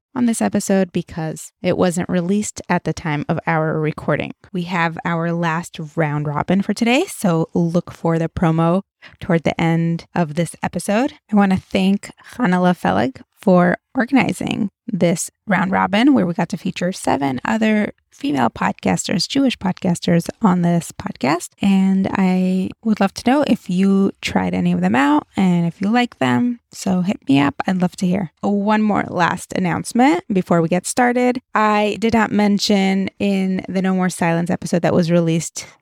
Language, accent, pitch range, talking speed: English, American, 170-215 Hz, 175 wpm